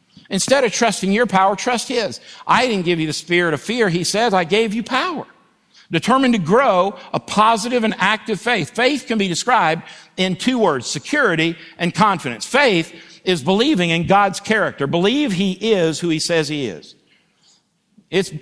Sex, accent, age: male, American, 60-79